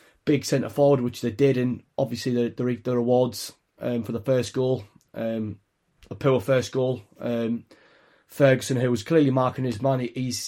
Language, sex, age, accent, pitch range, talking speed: English, male, 30-49, British, 120-135 Hz, 185 wpm